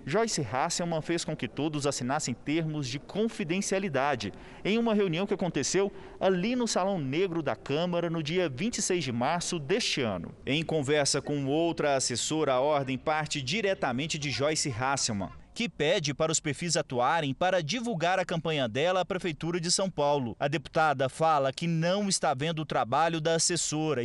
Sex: male